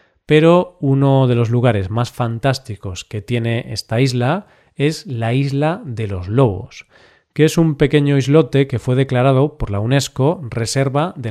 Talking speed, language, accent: 160 wpm, Spanish, Spanish